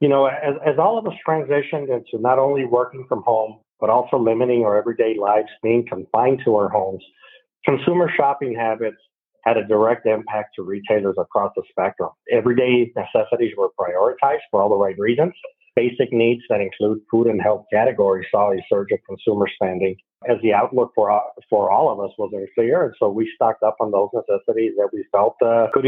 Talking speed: 195 wpm